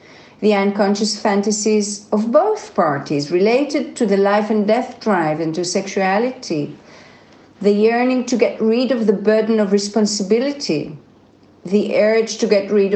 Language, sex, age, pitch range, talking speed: English, female, 50-69, 200-245 Hz, 145 wpm